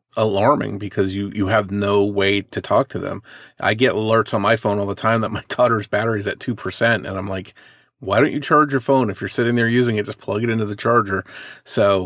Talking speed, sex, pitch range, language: 250 wpm, male, 100-130 Hz, English